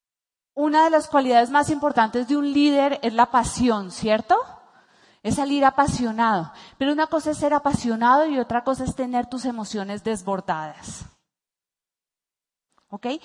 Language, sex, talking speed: Spanish, female, 140 wpm